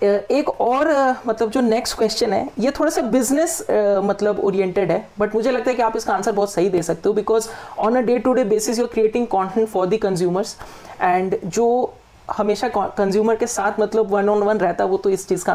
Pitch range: 195-240 Hz